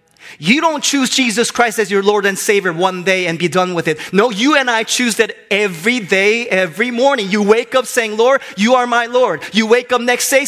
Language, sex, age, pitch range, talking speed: English, male, 30-49, 180-250 Hz, 235 wpm